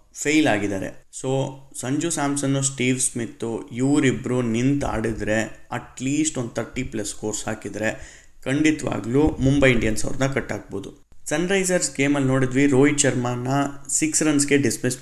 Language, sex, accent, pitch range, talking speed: Kannada, male, native, 110-140 Hz, 125 wpm